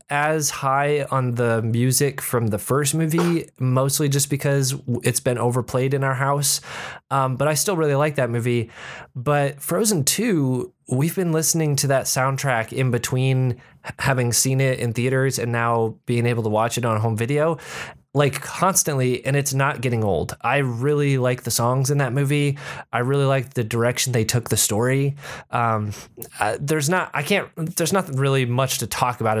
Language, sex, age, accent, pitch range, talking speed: English, male, 20-39, American, 110-140 Hz, 180 wpm